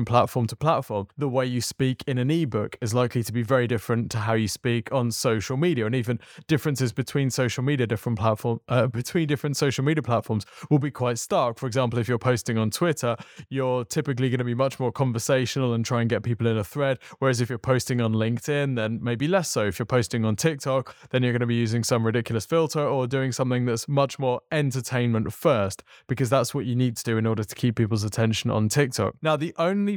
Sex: male